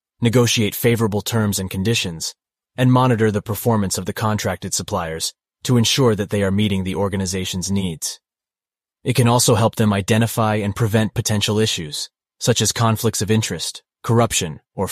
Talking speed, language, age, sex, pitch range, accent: 155 wpm, English, 30-49, male, 95-115 Hz, American